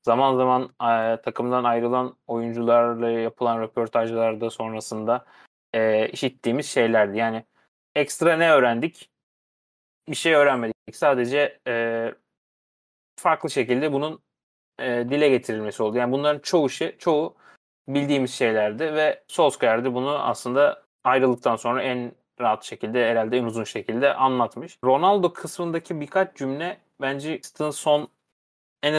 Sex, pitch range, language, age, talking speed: male, 120-145 Hz, Turkish, 30-49, 115 wpm